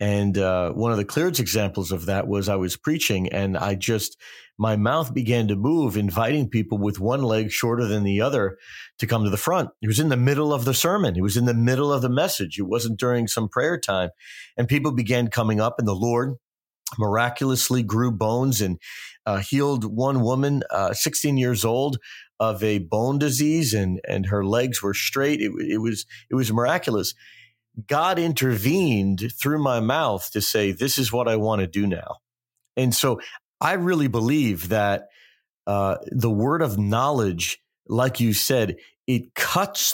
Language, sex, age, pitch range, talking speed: English, male, 40-59, 105-135 Hz, 185 wpm